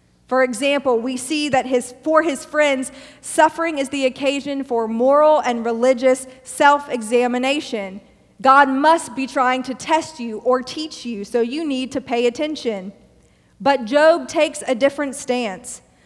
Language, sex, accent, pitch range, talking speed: English, female, American, 235-285 Hz, 150 wpm